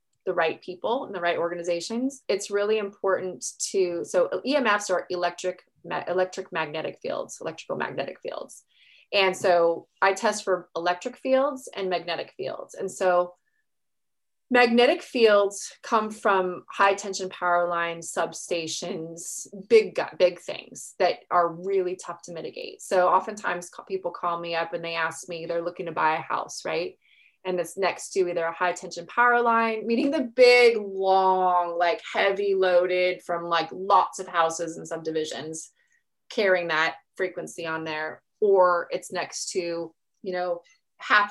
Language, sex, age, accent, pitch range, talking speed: English, female, 20-39, American, 175-215 Hz, 150 wpm